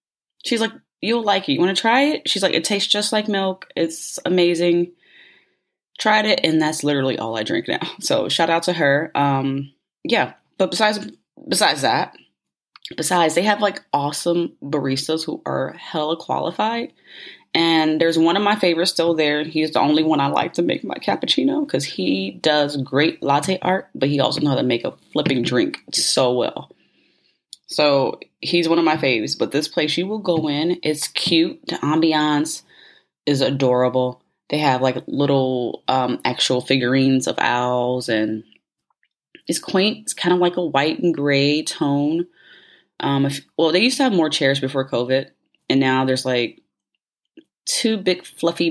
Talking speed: 175 wpm